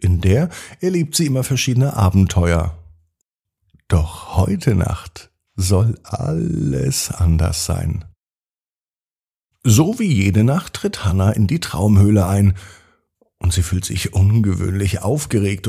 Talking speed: 115 wpm